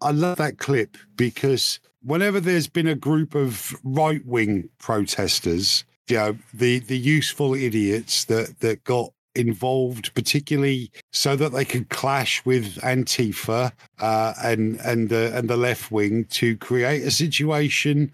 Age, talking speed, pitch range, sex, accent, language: 50-69, 145 wpm, 115-145 Hz, male, British, English